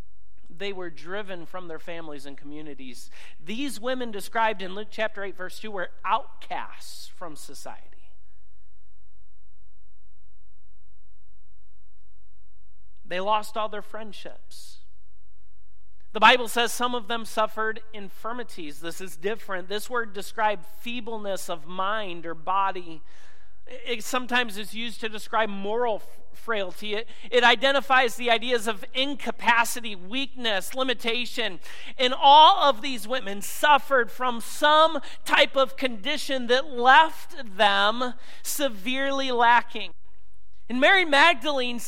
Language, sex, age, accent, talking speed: English, male, 40-59, American, 115 wpm